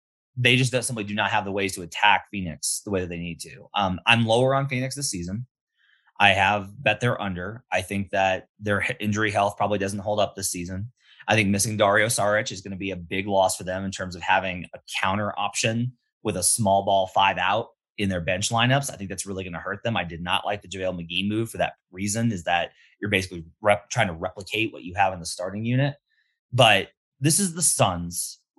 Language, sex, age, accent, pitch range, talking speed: English, male, 30-49, American, 95-125 Hz, 230 wpm